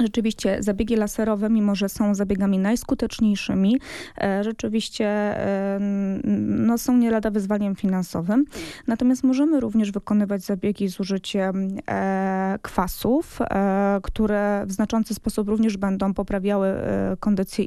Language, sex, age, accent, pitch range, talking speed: Polish, female, 20-39, native, 200-230 Hz, 105 wpm